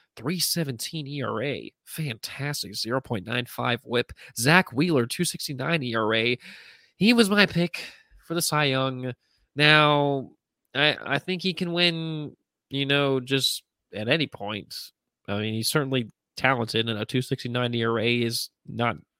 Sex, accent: male, American